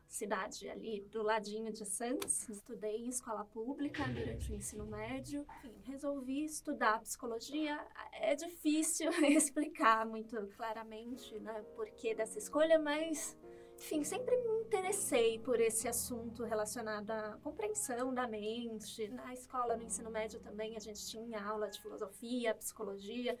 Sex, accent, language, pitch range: female, Brazilian, Portuguese, 220-270 Hz